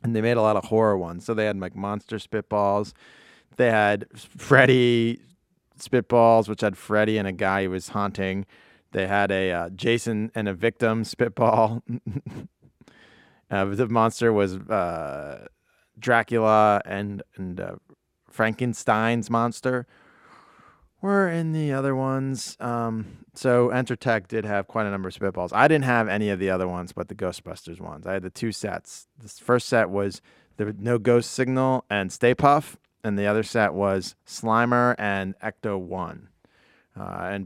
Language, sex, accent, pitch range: English, male, American, 100-120 Hz